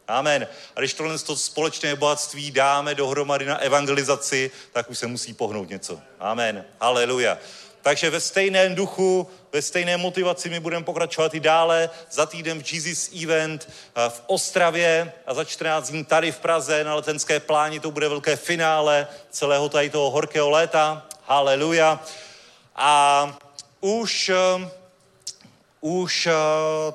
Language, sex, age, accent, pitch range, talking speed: Czech, male, 30-49, native, 145-170 Hz, 140 wpm